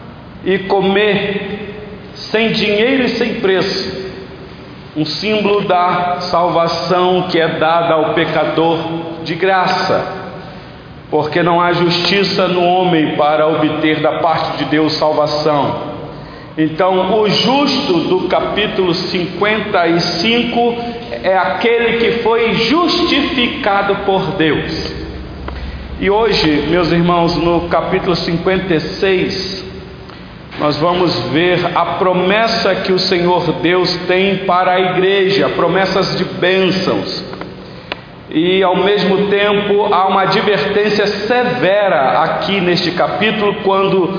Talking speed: 105 wpm